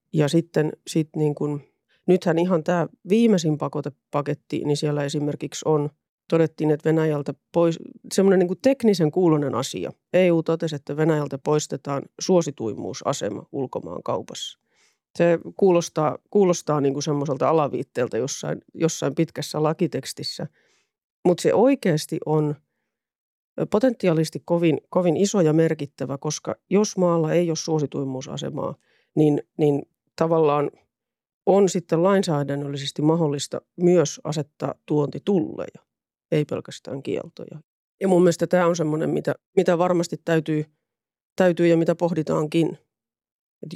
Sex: female